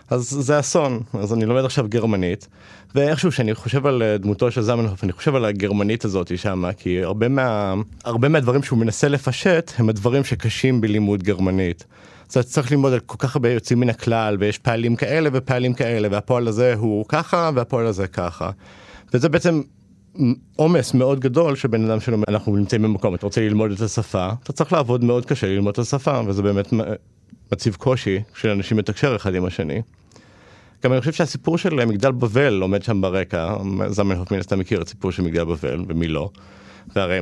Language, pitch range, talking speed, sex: Hebrew, 100-125 Hz, 165 wpm, male